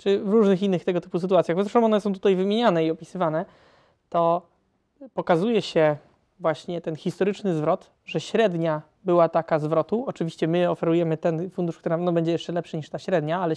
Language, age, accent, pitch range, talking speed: Polish, 20-39, native, 165-200 Hz, 175 wpm